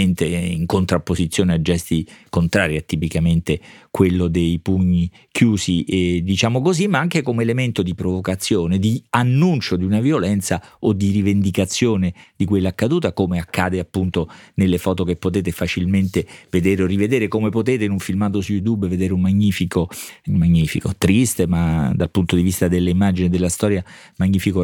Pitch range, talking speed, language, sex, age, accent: 90-110 Hz, 155 wpm, Italian, male, 40-59, native